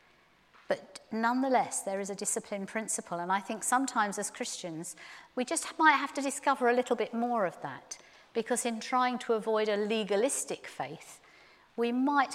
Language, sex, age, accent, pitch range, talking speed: English, female, 50-69, British, 195-255 Hz, 165 wpm